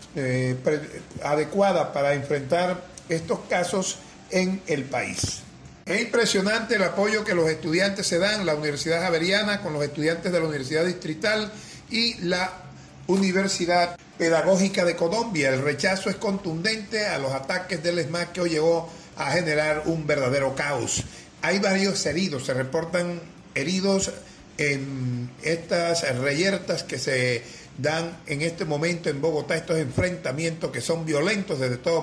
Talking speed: 140 wpm